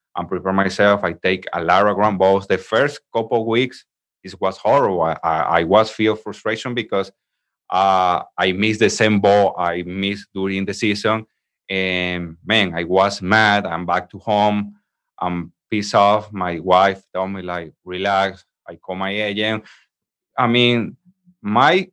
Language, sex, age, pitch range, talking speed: English, male, 30-49, 95-125 Hz, 160 wpm